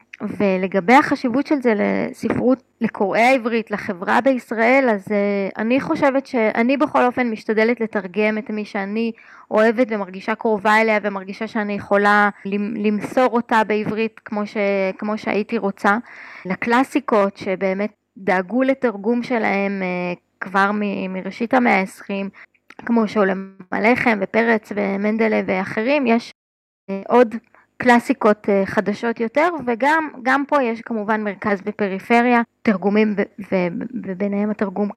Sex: female